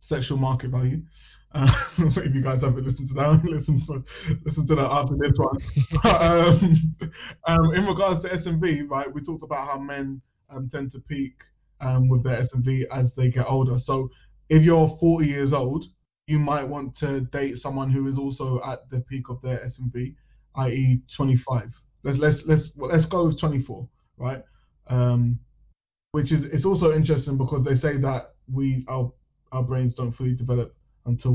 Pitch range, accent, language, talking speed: 125-145 Hz, British, English, 185 wpm